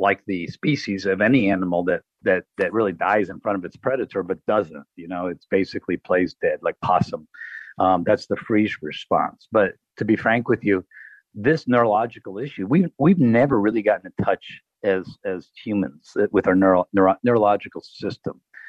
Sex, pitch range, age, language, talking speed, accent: male, 95-130 Hz, 50-69, English, 185 wpm, American